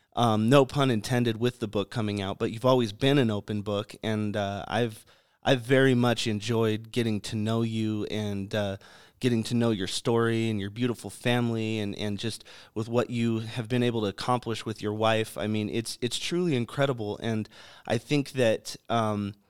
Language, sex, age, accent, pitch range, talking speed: English, male, 30-49, American, 105-125 Hz, 195 wpm